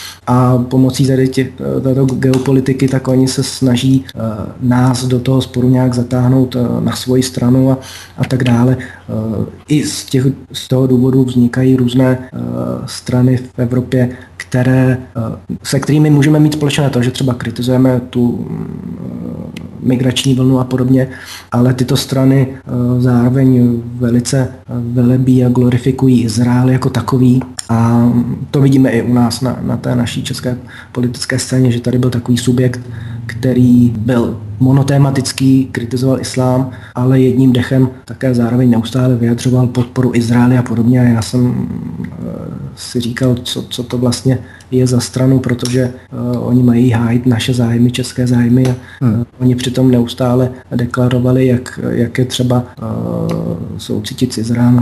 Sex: male